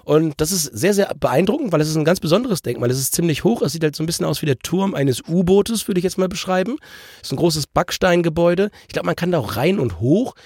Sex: male